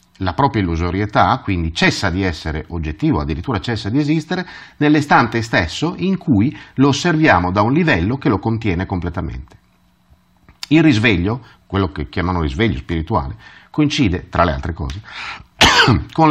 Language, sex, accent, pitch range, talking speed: Italian, male, native, 90-140 Hz, 140 wpm